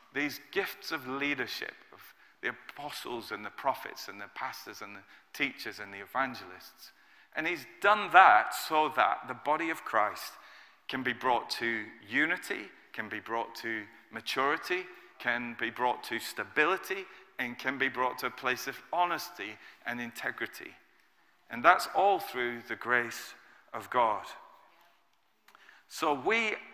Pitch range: 120-170 Hz